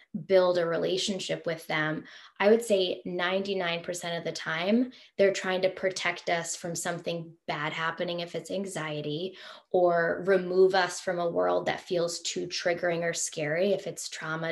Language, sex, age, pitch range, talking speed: English, female, 10-29, 175-200 Hz, 165 wpm